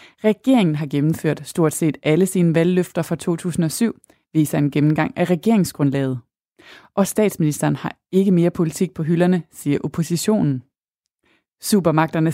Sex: female